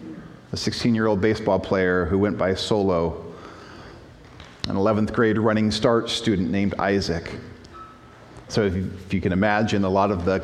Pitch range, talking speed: 95-125 Hz, 150 wpm